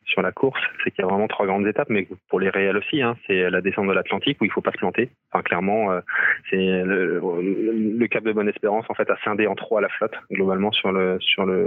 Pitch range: 95-105 Hz